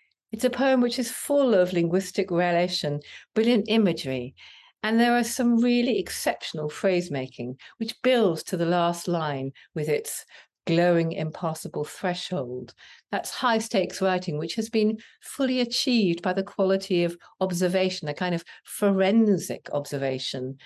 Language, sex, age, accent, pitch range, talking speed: English, female, 50-69, British, 160-210 Hz, 135 wpm